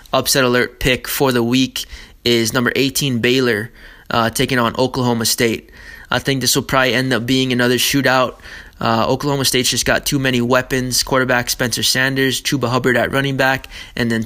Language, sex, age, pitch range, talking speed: English, male, 20-39, 115-130 Hz, 180 wpm